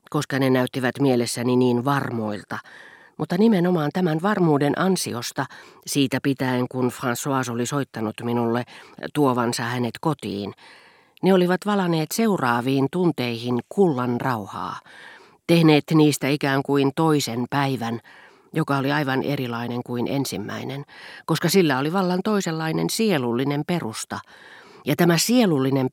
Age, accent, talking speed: 40-59, native, 115 wpm